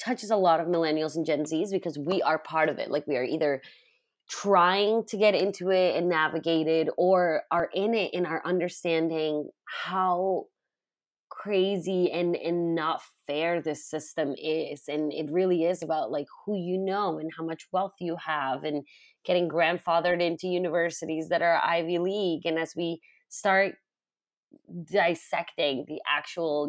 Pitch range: 160-190 Hz